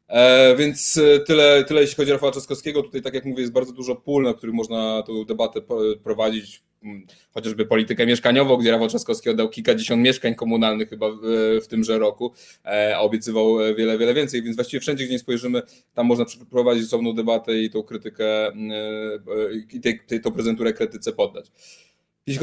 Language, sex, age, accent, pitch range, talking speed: Polish, male, 20-39, native, 110-130 Hz, 165 wpm